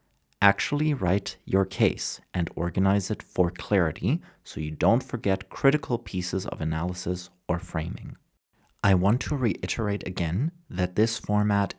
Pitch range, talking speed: 90-110 Hz, 135 wpm